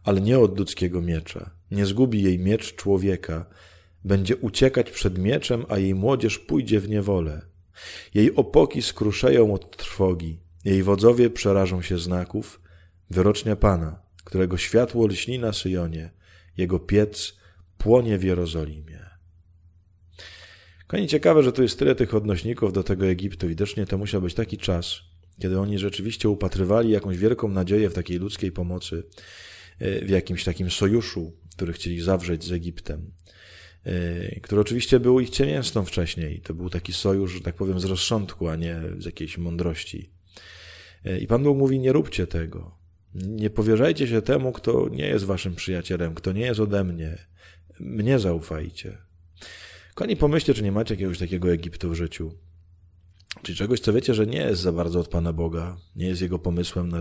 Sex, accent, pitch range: male, native, 85-105 Hz